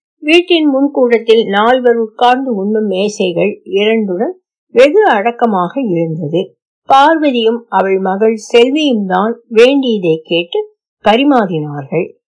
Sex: female